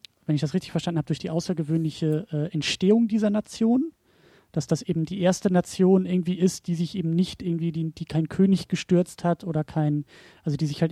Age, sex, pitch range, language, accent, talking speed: 30-49, male, 150-170 Hz, German, German, 210 wpm